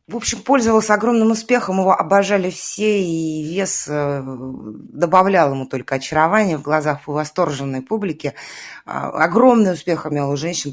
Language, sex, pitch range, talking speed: Russian, female, 145-185 Hz, 130 wpm